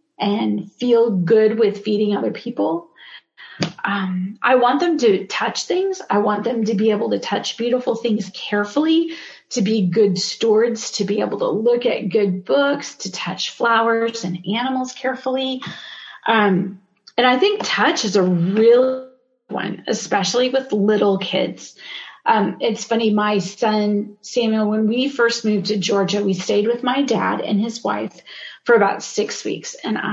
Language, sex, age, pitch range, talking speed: English, female, 30-49, 205-240 Hz, 160 wpm